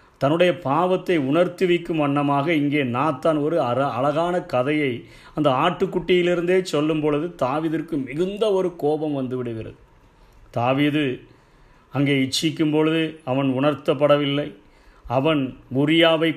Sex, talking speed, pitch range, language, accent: male, 100 wpm, 135-165 Hz, Tamil, native